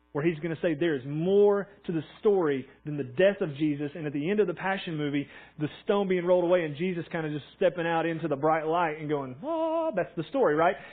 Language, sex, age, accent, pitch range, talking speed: English, male, 30-49, American, 155-210 Hz, 260 wpm